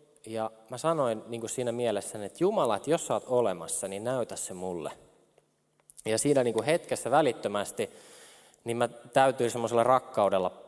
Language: Finnish